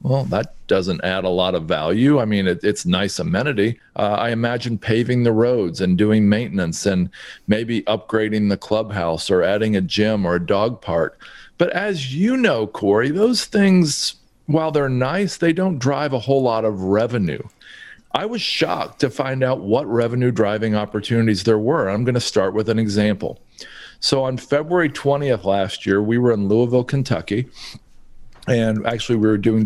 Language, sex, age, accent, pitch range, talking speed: English, male, 40-59, American, 100-125 Hz, 175 wpm